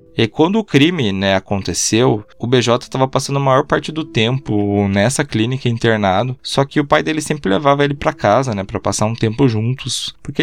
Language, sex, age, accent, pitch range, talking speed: Portuguese, male, 20-39, Brazilian, 105-140 Hz, 200 wpm